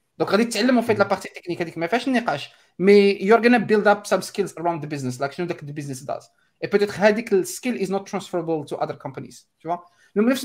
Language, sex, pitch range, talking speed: Arabic, male, 160-210 Hz, 220 wpm